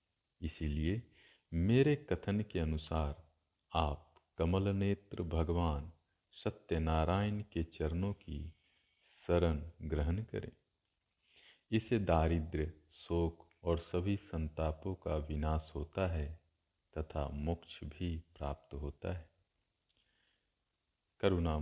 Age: 40-59